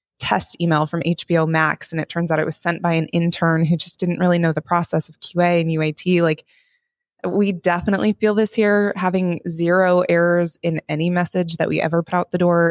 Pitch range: 160-185 Hz